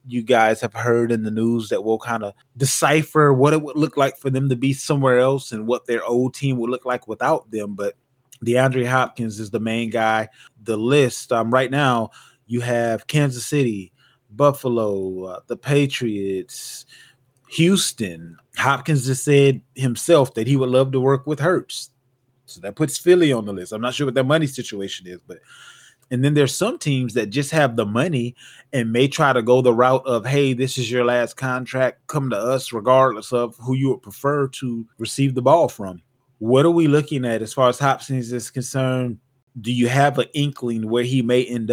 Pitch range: 115-135 Hz